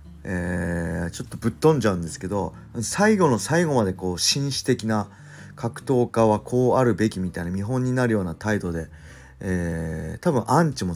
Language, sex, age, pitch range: Japanese, male, 40-59, 90-130 Hz